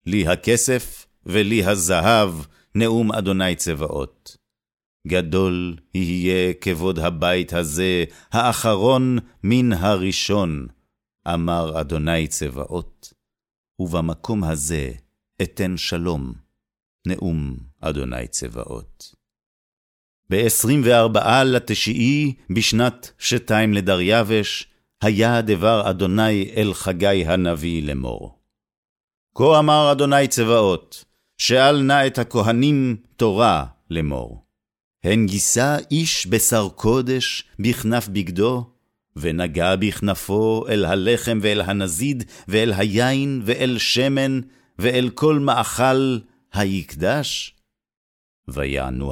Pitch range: 85-120 Hz